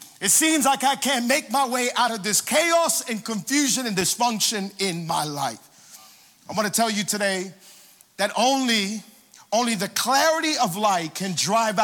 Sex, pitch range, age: male, 190-255 Hz, 40-59